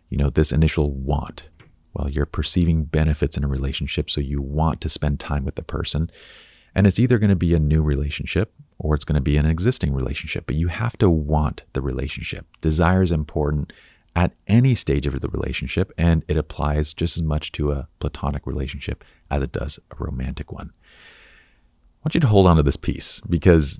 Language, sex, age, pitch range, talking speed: English, male, 40-59, 75-85 Hz, 205 wpm